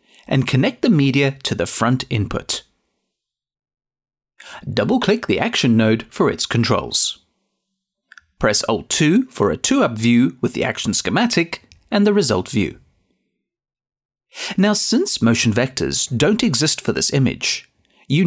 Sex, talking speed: male, 130 wpm